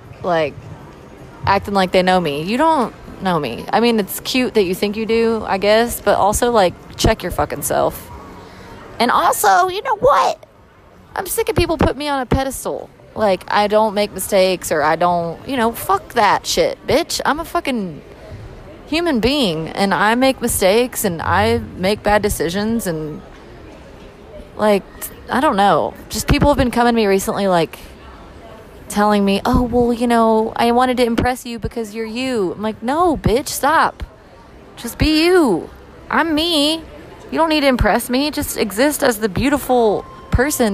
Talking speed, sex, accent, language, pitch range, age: 175 wpm, female, American, English, 195-265 Hz, 30-49